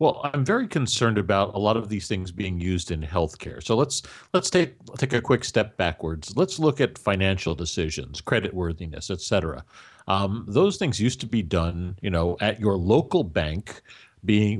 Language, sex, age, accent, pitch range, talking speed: English, male, 50-69, American, 95-125 Hz, 185 wpm